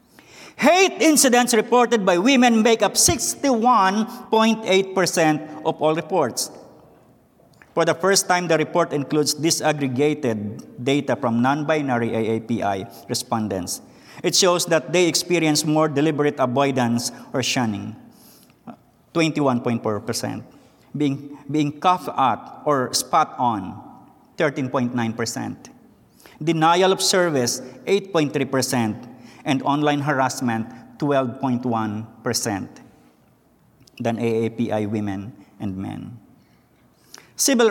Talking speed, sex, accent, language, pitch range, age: 90 wpm, male, Filipino, English, 120-180 Hz, 50-69